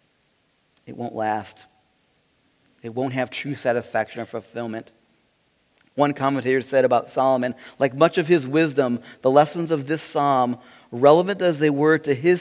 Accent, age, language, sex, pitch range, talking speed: American, 40-59, English, male, 130-170 Hz, 150 wpm